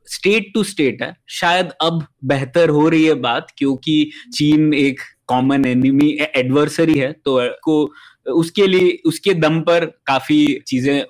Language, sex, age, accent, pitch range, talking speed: Hindi, male, 20-39, native, 135-170 Hz, 110 wpm